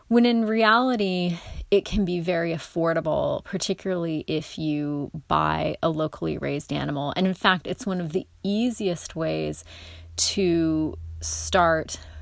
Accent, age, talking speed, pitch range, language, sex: American, 30-49, 135 wpm, 150-185 Hz, English, female